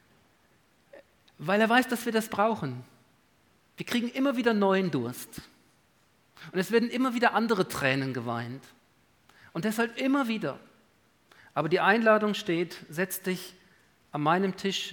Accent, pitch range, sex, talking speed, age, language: German, 165-215 Hz, male, 135 wpm, 40-59, German